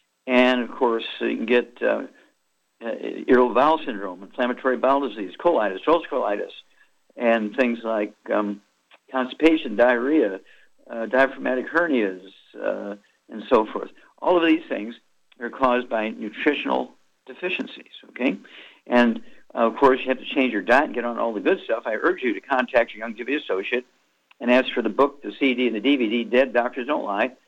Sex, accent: male, American